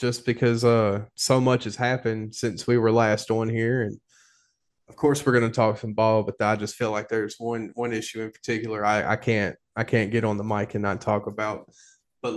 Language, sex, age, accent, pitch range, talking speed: English, male, 20-39, American, 110-120 Hz, 230 wpm